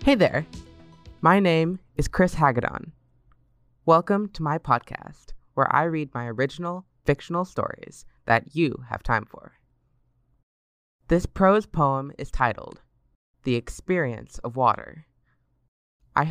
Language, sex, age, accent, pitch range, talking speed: English, female, 20-39, American, 120-155 Hz, 120 wpm